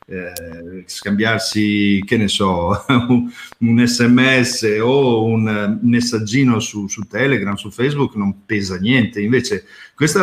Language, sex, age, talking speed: Italian, male, 50-69, 110 wpm